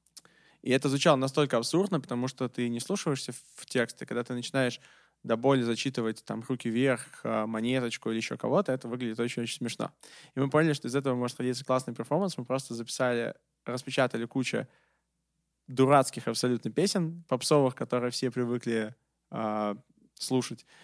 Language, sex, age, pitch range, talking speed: Russian, male, 20-39, 115-135 Hz, 155 wpm